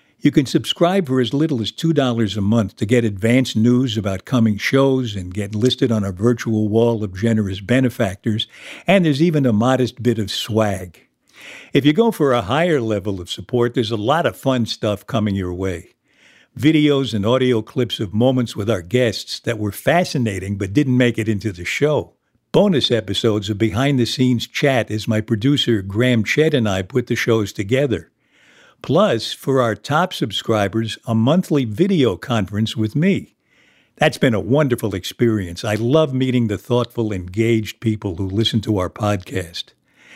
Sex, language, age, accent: male, English, 60-79, American